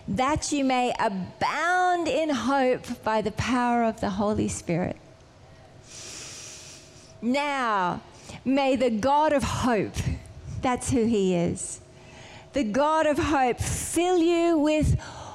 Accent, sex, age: Australian, female, 40-59